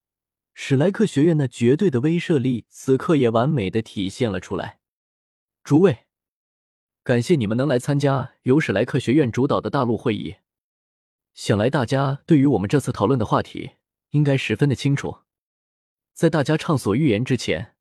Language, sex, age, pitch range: Chinese, male, 20-39, 105-150 Hz